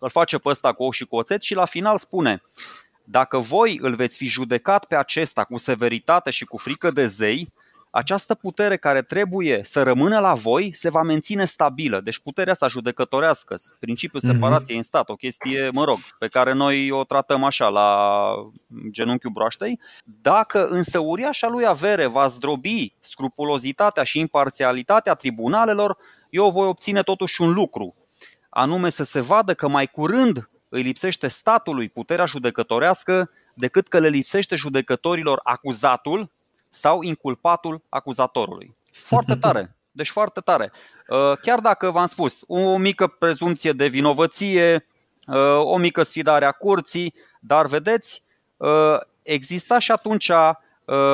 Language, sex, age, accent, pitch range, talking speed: Romanian, male, 20-39, native, 130-185 Hz, 145 wpm